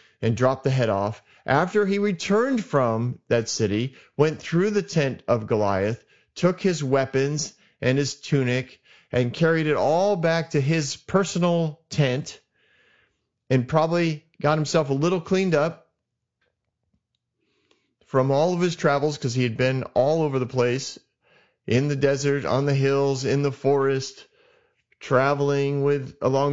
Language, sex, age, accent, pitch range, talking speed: English, male, 30-49, American, 130-160 Hz, 145 wpm